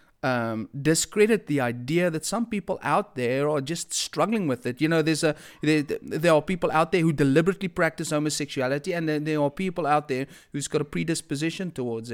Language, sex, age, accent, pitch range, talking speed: English, male, 30-49, South African, 130-160 Hz, 200 wpm